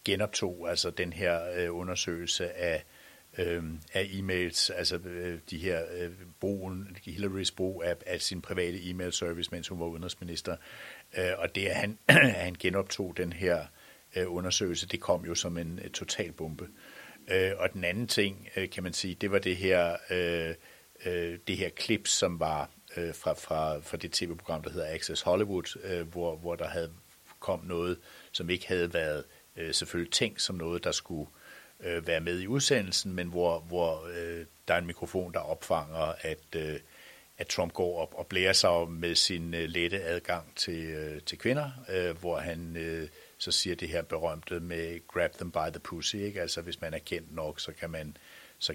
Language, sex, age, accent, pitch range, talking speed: Danish, male, 60-79, native, 85-95 Hz, 180 wpm